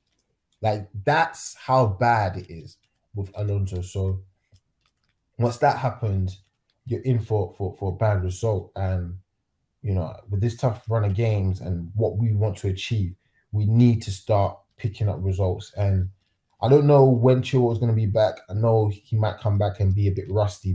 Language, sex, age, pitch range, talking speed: English, male, 20-39, 95-110 Hz, 185 wpm